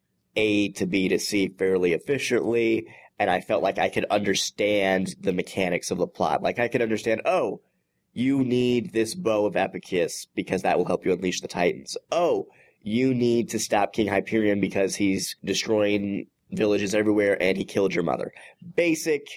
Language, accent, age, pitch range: English, American, 30-49, 100-125 Hz